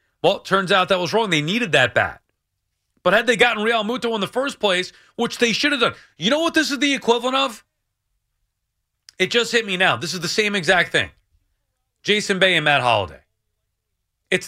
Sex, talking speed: male, 210 wpm